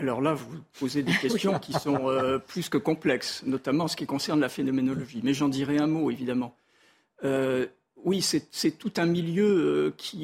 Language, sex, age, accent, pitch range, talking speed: French, male, 50-69, French, 135-165 Hz, 200 wpm